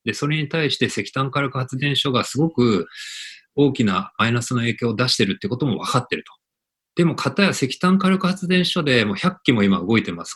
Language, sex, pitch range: Japanese, male, 115-170 Hz